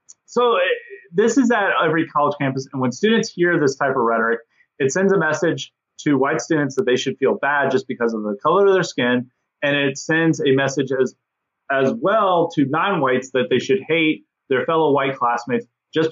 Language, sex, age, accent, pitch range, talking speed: English, male, 30-49, American, 130-170 Hz, 200 wpm